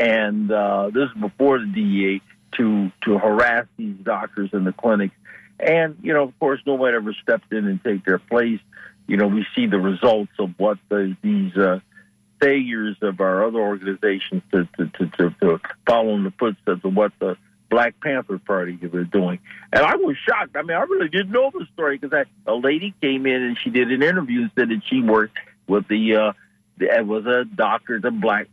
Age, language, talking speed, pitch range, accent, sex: 60-79, English, 205 wpm, 105-150 Hz, American, male